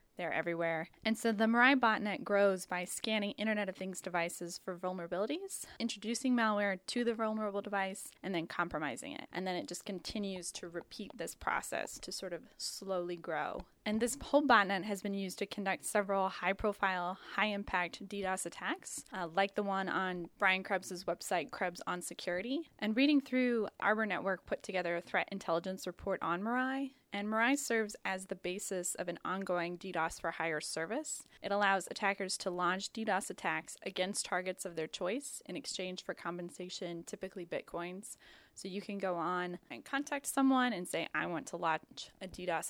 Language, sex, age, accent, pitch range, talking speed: English, female, 10-29, American, 180-220 Hz, 175 wpm